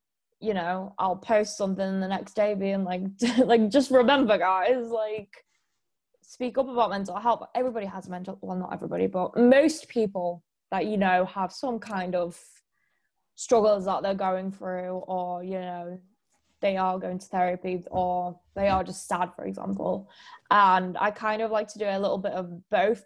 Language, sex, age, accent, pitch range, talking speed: English, female, 10-29, British, 185-215 Hz, 180 wpm